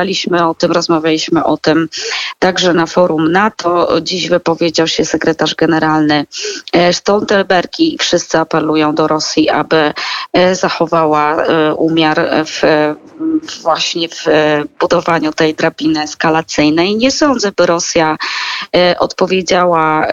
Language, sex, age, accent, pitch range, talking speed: Polish, female, 20-39, native, 160-185 Hz, 100 wpm